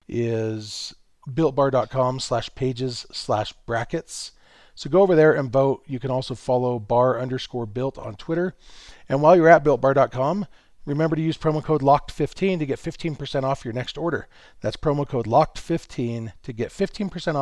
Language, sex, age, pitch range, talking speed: English, male, 40-59, 120-155 Hz, 165 wpm